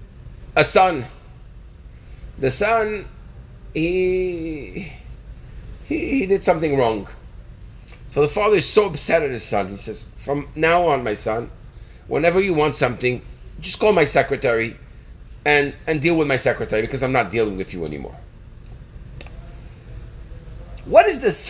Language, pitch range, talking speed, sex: English, 135-220 Hz, 140 wpm, male